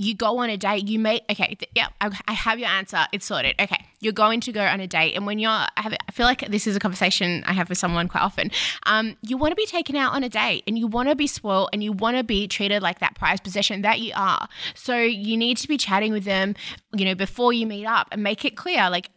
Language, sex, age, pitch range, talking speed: English, female, 20-39, 200-240 Hz, 285 wpm